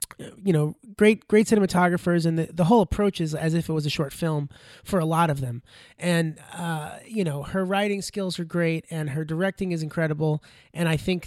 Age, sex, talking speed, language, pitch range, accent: 30-49, male, 215 wpm, English, 155-195 Hz, American